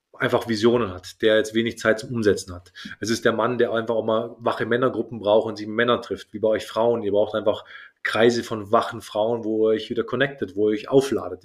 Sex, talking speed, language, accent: male, 235 wpm, German, German